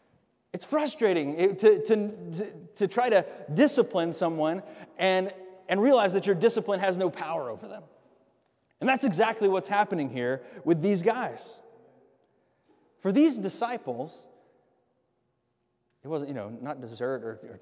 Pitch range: 160-225 Hz